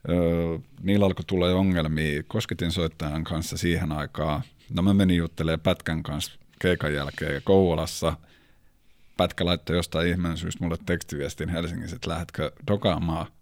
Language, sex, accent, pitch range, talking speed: Finnish, male, native, 80-95 Hz, 140 wpm